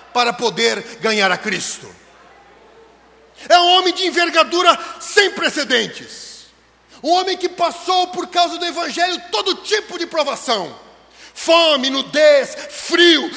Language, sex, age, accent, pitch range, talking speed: Portuguese, male, 40-59, Brazilian, 300-355 Hz, 120 wpm